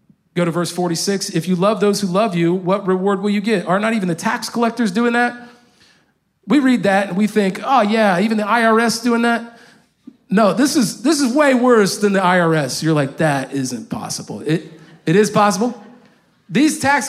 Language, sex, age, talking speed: English, male, 40-59, 205 wpm